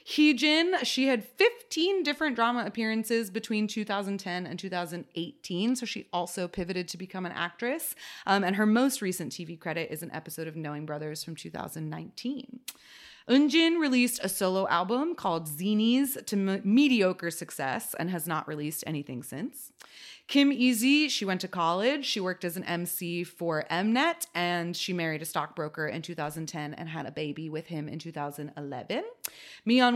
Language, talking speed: English, 160 wpm